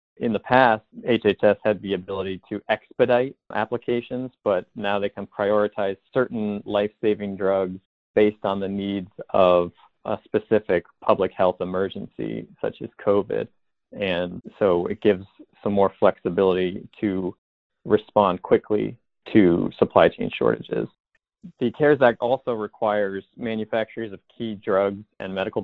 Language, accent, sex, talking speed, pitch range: English, American, male, 130 wpm, 95-105 Hz